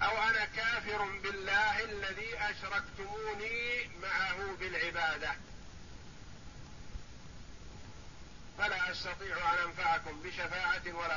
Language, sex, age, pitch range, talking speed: Arabic, male, 50-69, 115-195 Hz, 75 wpm